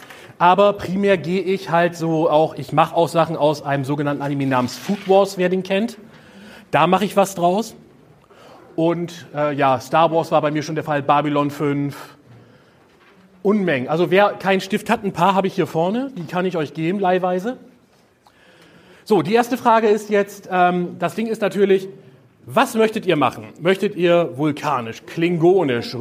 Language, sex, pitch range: German, male, 150-200 Hz